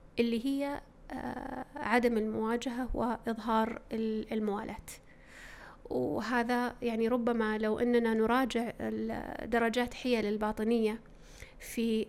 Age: 30-49